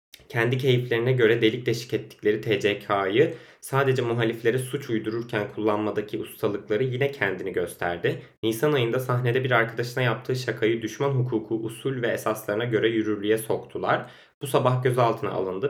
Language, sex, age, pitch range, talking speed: Turkish, male, 20-39, 110-135 Hz, 135 wpm